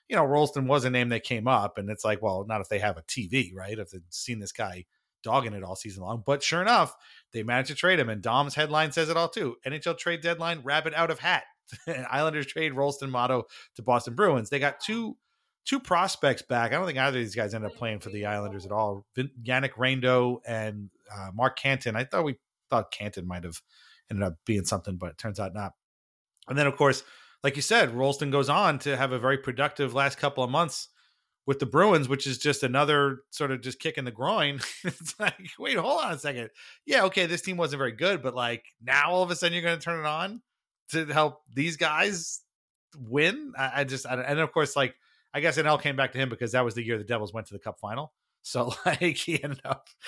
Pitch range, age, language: 110-155 Hz, 30-49, English